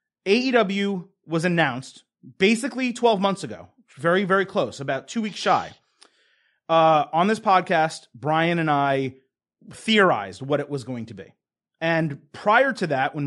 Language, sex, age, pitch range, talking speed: English, male, 30-49, 140-195 Hz, 150 wpm